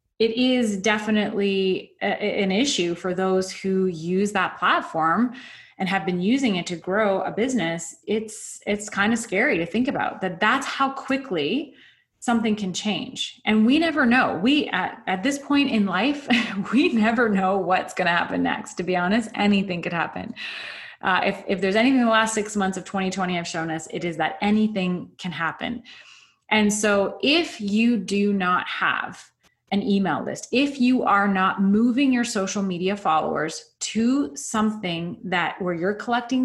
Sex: female